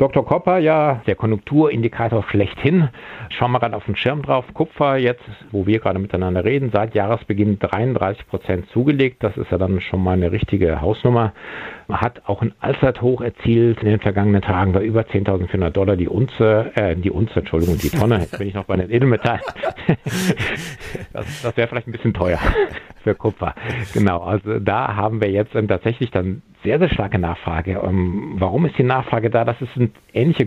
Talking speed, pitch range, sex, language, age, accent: 180 wpm, 95-120 Hz, male, German, 50-69, German